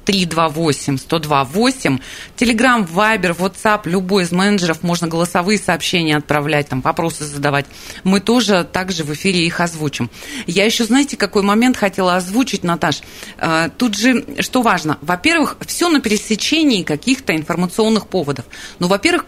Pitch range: 150-220 Hz